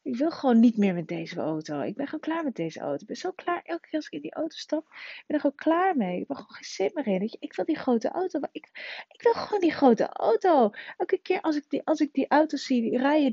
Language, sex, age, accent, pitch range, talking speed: Dutch, female, 30-49, Dutch, 200-315 Hz, 275 wpm